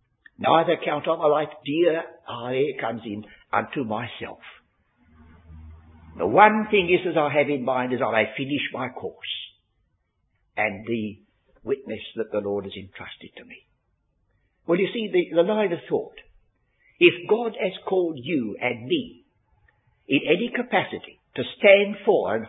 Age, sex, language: 60-79, male, English